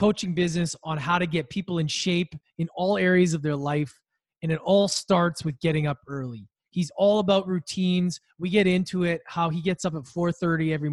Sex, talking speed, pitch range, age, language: male, 215 wpm, 150-175 Hz, 20-39, English